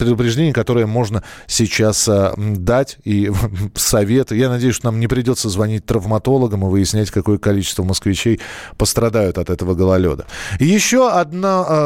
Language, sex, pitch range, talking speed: Russian, male, 100-140 Hz, 135 wpm